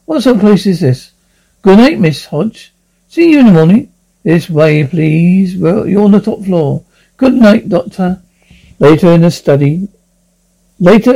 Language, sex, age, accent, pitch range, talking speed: English, male, 60-79, British, 160-195 Hz, 170 wpm